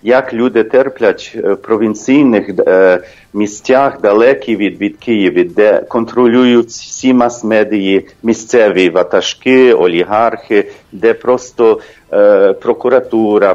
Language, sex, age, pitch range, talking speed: English, male, 40-59, 110-140 Hz, 90 wpm